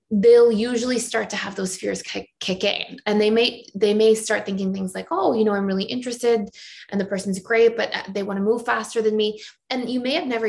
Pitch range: 195-225 Hz